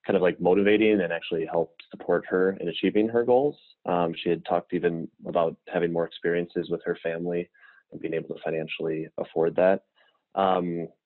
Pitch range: 85-105 Hz